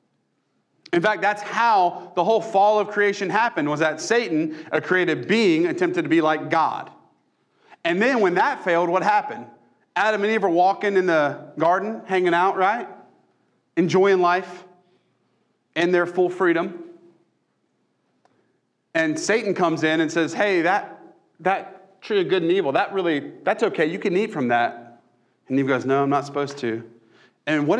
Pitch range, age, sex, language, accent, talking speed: 140-185 Hz, 40-59, male, English, American, 170 wpm